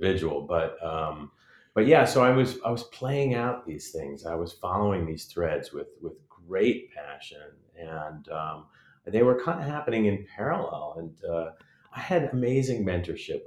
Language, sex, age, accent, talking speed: English, male, 40-59, American, 165 wpm